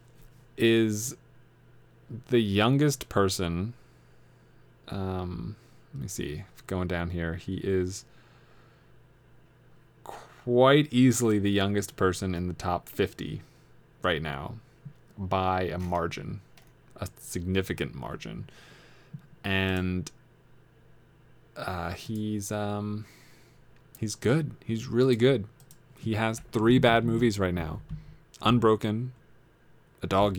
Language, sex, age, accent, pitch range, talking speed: English, male, 20-39, American, 95-130 Hz, 95 wpm